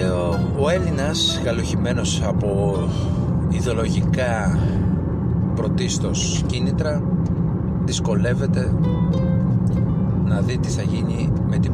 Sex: male